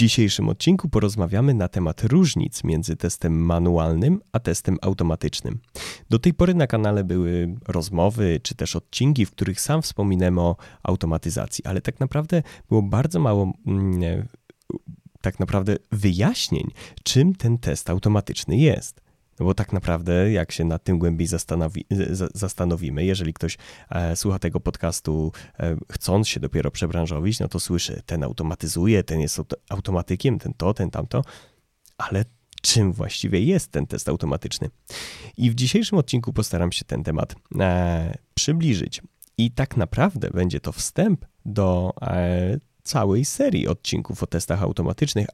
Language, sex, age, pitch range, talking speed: Polish, male, 30-49, 85-115 Hz, 140 wpm